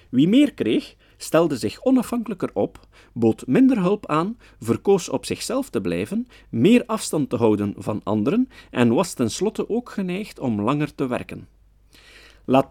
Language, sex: Dutch, male